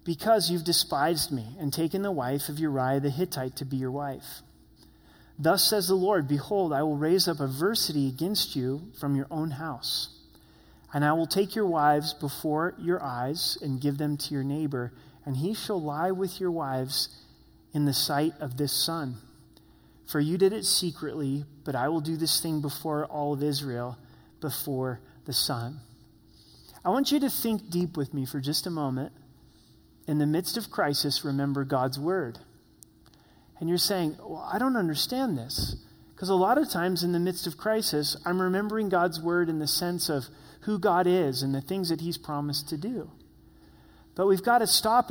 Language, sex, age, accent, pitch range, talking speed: English, male, 30-49, American, 140-185 Hz, 185 wpm